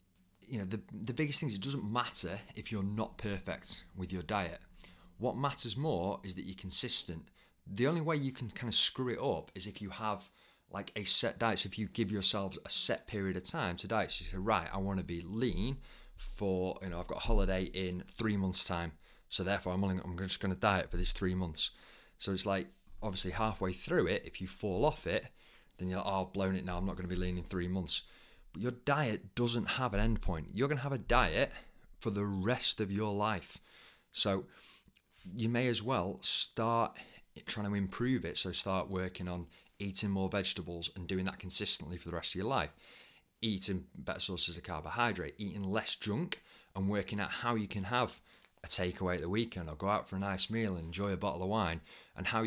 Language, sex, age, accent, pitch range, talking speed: English, male, 30-49, British, 90-110 Hz, 225 wpm